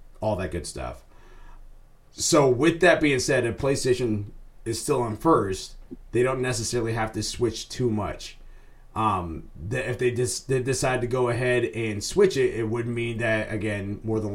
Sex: male